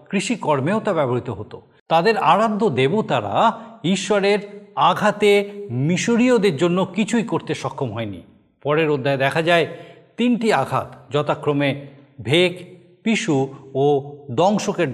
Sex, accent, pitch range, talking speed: male, native, 140-195 Hz, 100 wpm